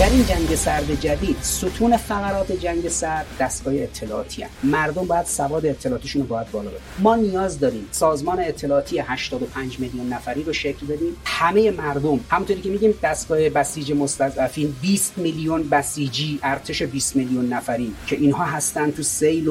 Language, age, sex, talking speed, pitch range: Persian, 30-49, male, 150 wpm, 145-200 Hz